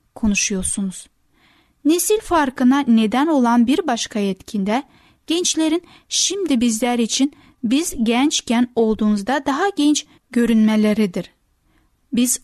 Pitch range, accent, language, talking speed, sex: 215-275 Hz, native, Turkish, 90 wpm, female